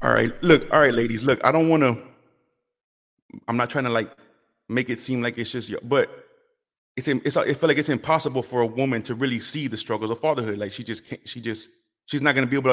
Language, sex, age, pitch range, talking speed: English, male, 30-49, 115-150 Hz, 250 wpm